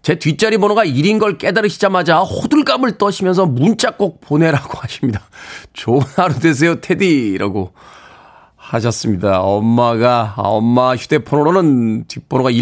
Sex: male